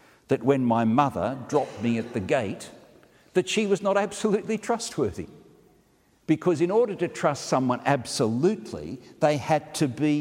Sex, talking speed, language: male, 155 wpm, English